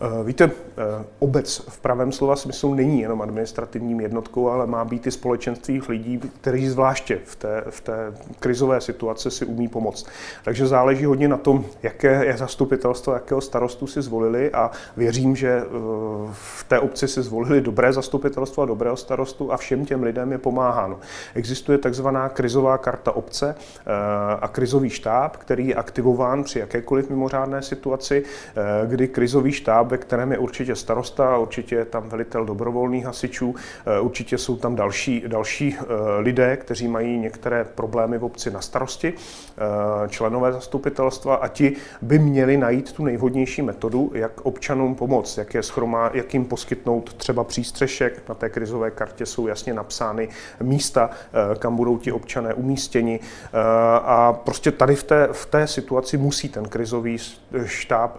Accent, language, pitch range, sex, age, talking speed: native, Czech, 115-135 Hz, male, 30-49, 150 wpm